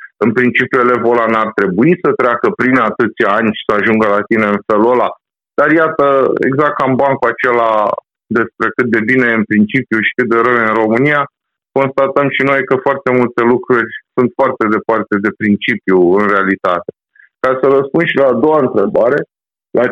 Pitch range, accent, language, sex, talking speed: 105-135 Hz, native, Romanian, male, 180 wpm